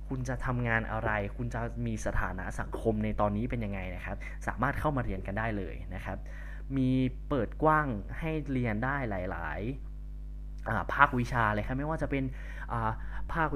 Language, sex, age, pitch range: Thai, male, 20-39, 95-130 Hz